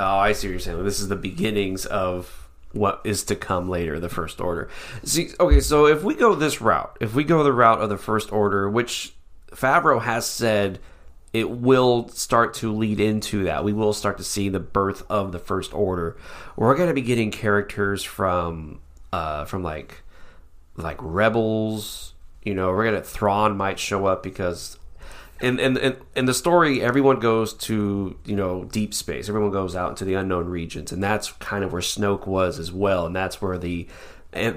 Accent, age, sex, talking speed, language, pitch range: American, 30-49, male, 200 wpm, English, 90-110 Hz